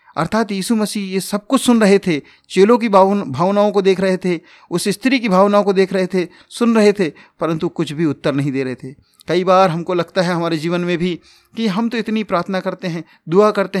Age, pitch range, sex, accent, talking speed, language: 40-59, 145-195 Hz, male, native, 230 wpm, Hindi